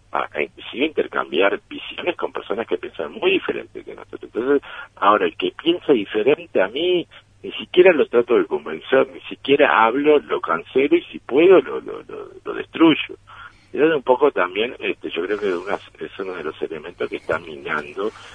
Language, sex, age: Spanish, male, 60-79